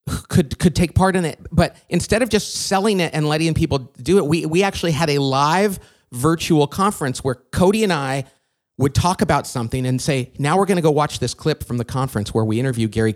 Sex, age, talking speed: male, 40-59, 230 wpm